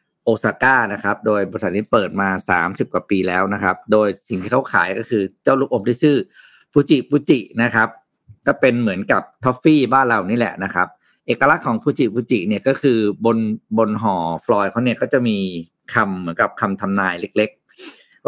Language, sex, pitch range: Thai, male, 105-130 Hz